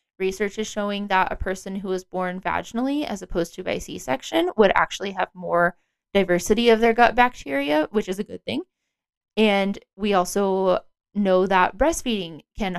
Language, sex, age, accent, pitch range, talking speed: English, female, 20-39, American, 185-220 Hz, 170 wpm